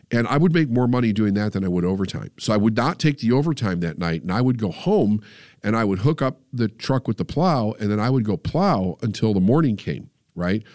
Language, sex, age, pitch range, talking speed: English, male, 50-69, 105-150 Hz, 260 wpm